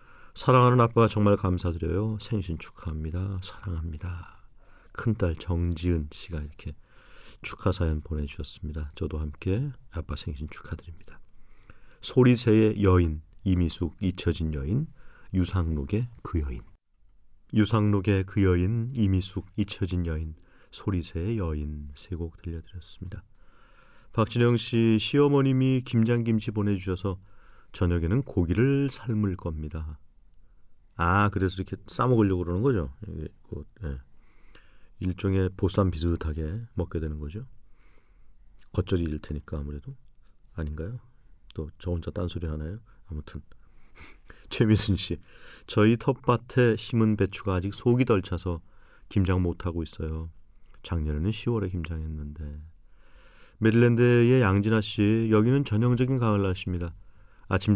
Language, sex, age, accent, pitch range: Korean, male, 40-59, native, 85-110 Hz